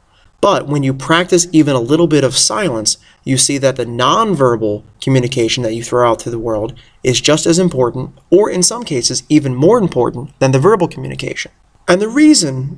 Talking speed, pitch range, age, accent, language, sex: 195 wpm, 125-170 Hz, 20-39, American, English, male